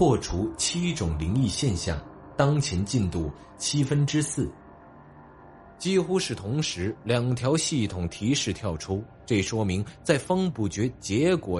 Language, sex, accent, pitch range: Chinese, male, native, 85-140 Hz